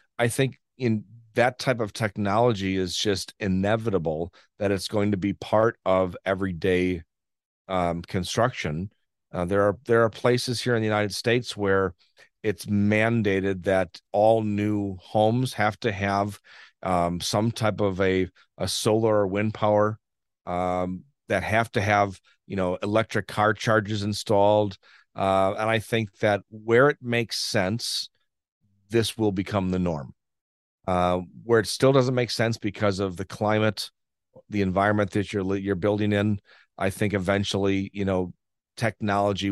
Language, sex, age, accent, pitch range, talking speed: English, male, 40-59, American, 95-110 Hz, 150 wpm